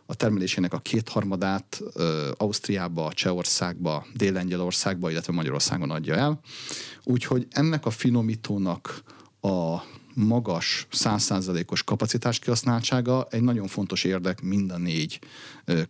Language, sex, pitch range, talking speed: Hungarian, male, 90-125 Hz, 110 wpm